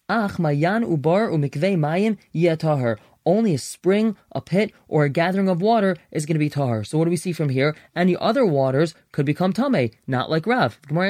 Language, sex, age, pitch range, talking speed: English, male, 20-39, 145-190 Hz, 220 wpm